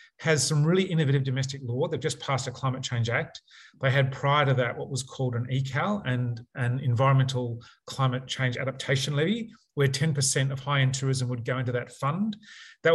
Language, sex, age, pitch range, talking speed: English, male, 30-49, 125-145 Hz, 195 wpm